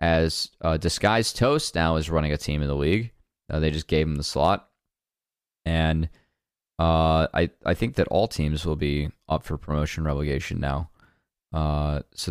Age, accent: 20-39, American